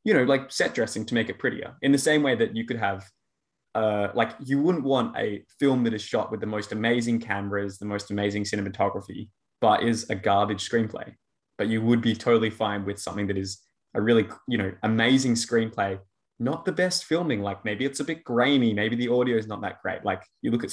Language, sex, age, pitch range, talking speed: English, male, 20-39, 105-135 Hz, 225 wpm